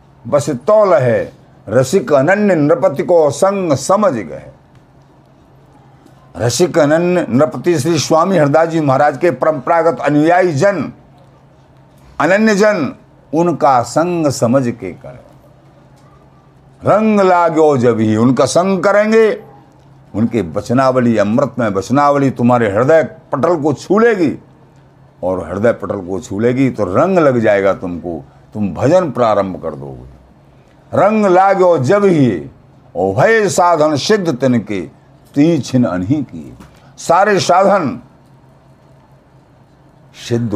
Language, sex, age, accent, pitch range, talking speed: Hindi, male, 50-69, native, 110-160 Hz, 110 wpm